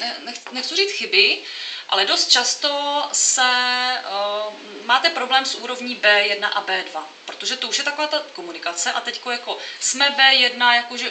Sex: female